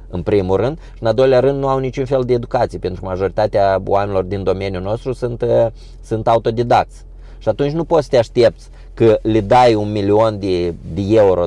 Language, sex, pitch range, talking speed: Romanian, male, 100-125 Hz, 205 wpm